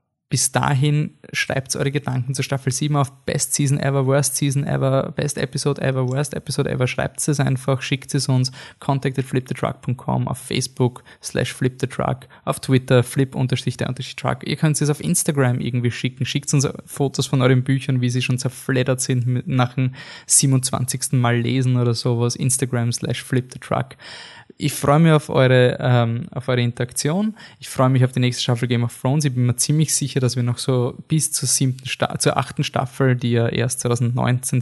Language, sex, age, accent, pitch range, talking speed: German, male, 20-39, German, 125-140 Hz, 175 wpm